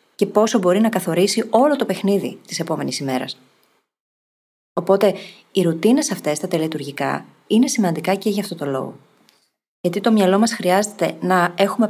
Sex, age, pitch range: female, 30-49, 165-205 Hz